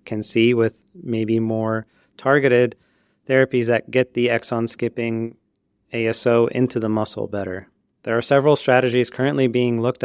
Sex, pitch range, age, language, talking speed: male, 110-125 Hz, 30-49, English, 135 wpm